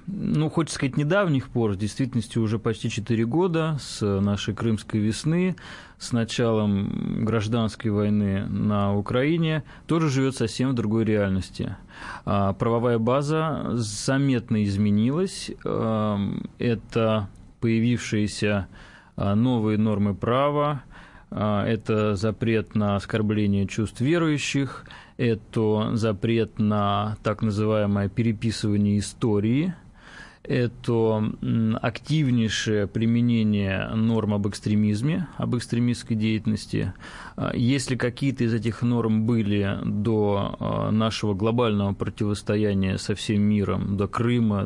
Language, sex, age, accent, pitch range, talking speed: Russian, male, 20-39, native, 105-125 Hz, 100 wpm